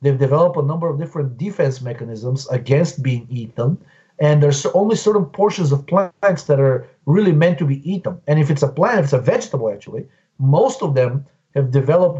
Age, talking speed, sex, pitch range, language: 40-59, 195 wpm, male, 135-170 Hz, English